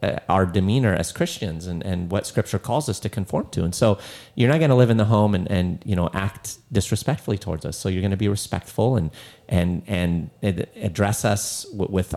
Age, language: 30-49, English